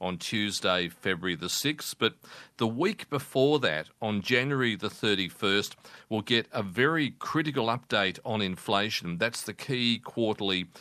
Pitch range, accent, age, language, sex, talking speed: 90-115 Hz, Australian, 40-59, English, male, 145 wpm